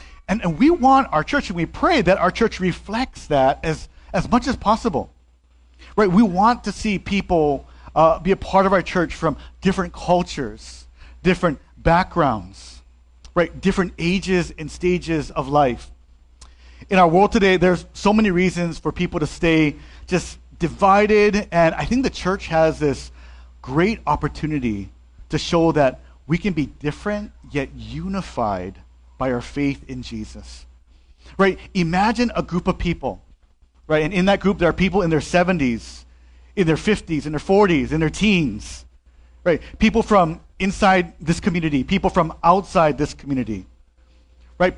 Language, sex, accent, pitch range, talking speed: English, male, American, 115-190 Hz, 160 wpm